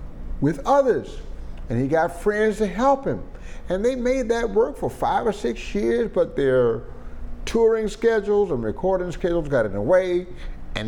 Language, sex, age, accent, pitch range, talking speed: English, male, 50-69, American, 100-140 Hz, 170 wpm